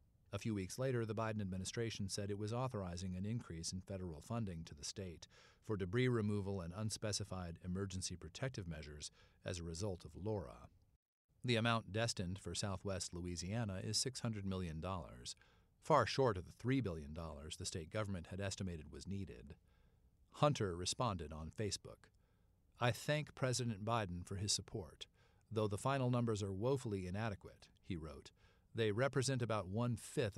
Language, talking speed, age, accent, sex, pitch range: English, 155 wpm, 50-69, American, male, 90-115 Hz